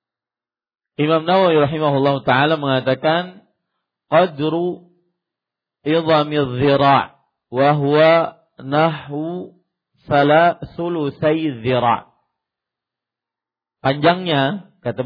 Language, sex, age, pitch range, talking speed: Malay, male, 50-69, 125-155 Hz, 60 wpm